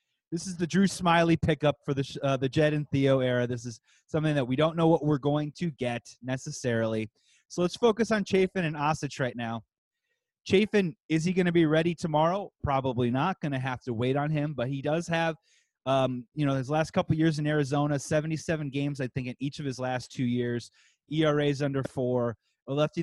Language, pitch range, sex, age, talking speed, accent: English, 130-165 Hz, male, 30-49, 215 wpm, American